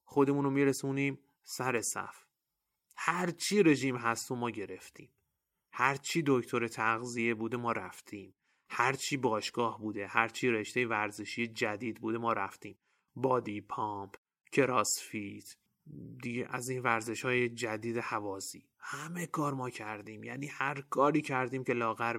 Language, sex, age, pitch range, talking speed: Persian, male, 30-49, 115-140 Hz, 125 wpm